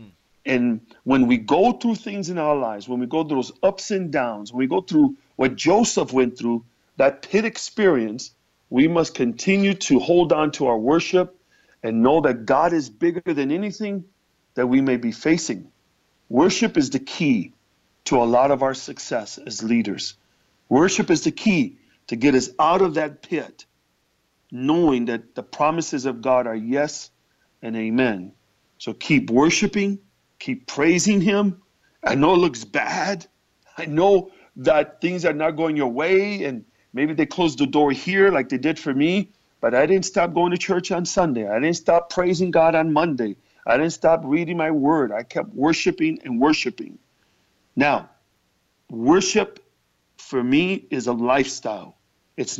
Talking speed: 170 wpm